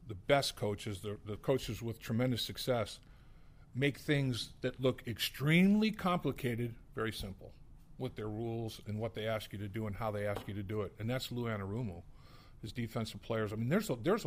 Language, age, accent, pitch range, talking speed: English, 50-69, American, 110-135 Hz, 200 wpm